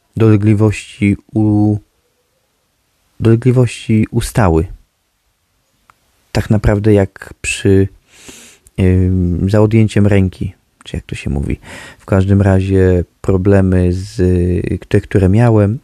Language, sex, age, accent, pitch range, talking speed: Polish, male, 30-49, native, 95-110 Hz, 95 wpm